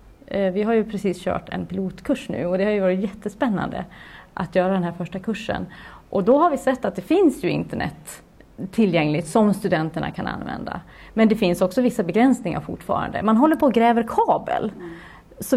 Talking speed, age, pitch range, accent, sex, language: 190 wpm, 30-49, 180-235 Hz, Swedish, female, English